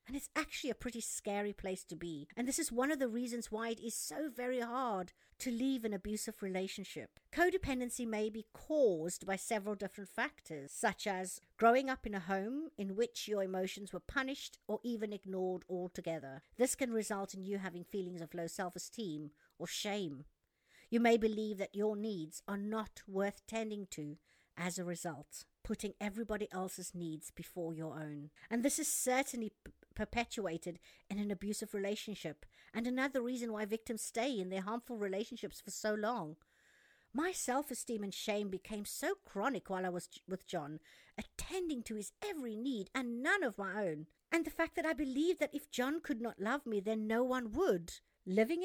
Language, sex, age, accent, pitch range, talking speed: English, female, 50-69, British, 190-250 Hz, 180 wpm